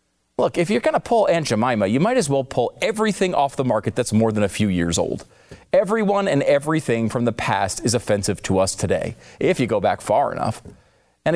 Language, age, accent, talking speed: English, 40-59, American, 220 wpm